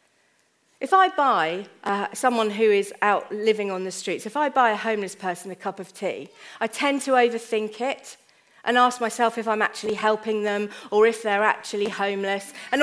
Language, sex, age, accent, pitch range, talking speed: English, female, 40-59, British, 200-265 Hz, 190 wpm